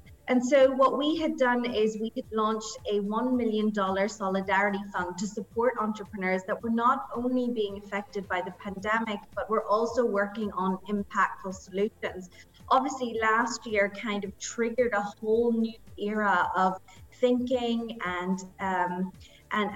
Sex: female